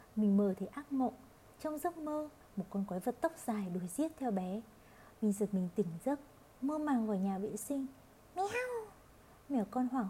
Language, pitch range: Vietnamese, 205-280 Hz